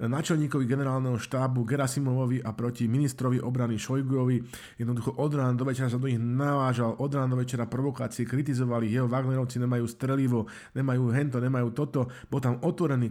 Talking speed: 160 wpm